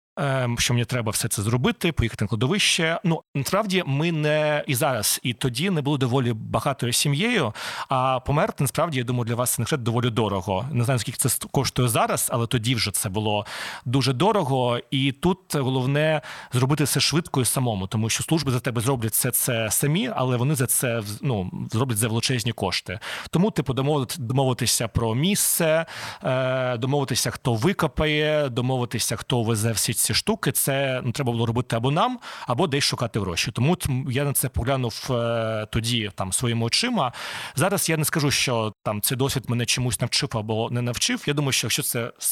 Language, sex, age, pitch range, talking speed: Ukrainian, male, 30-49, 120-150 Hz, 180 wpm